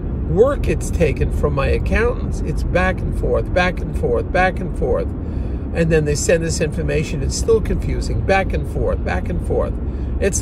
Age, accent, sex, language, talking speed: 50-69, American, male, English, 185 wpm